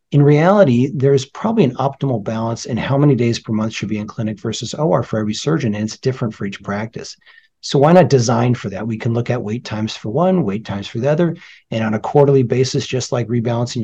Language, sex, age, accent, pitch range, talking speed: English, male, 40-59, American, 110-140 Hz, 240 wpm